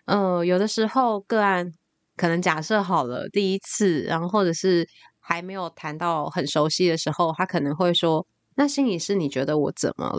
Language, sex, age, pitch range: Chinese, female, 20-39, 165-210 Hz